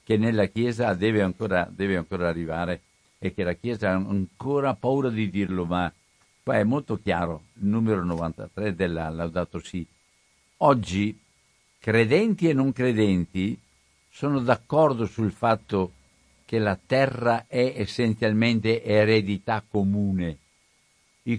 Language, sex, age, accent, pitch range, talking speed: Italian, male, 60-79, native, 95-130 Hz, 120 wpm